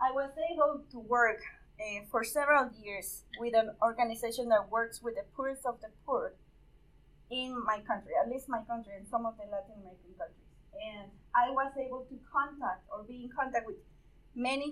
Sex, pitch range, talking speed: female, 220-270 Hz, 190 wpm